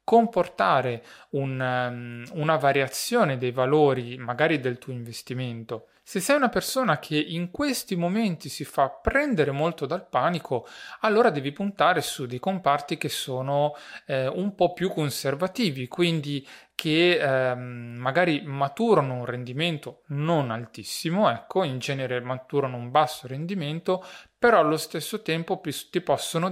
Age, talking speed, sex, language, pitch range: 30-49, 130 wpm, male, Italian, 130-175 Hz